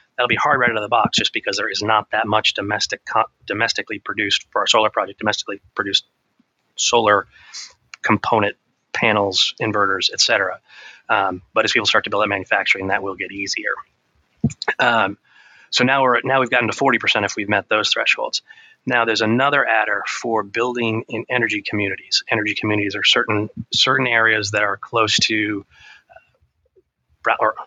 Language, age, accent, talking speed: English, 30-49, American, 170 wpm